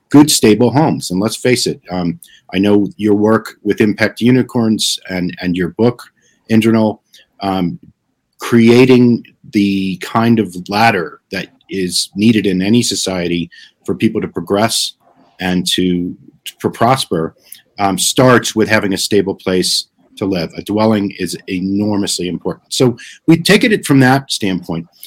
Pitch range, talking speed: 100-135 Hz, 150 wpm